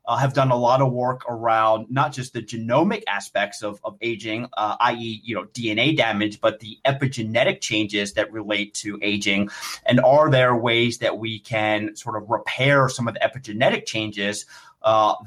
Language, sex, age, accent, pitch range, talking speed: English, male, 30-49, American, 110-135 Hz, 180 wpm